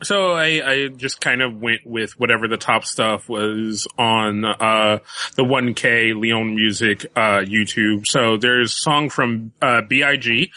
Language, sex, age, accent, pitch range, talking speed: English, male, 30-49, American, 115-155 Hz, 160 wpm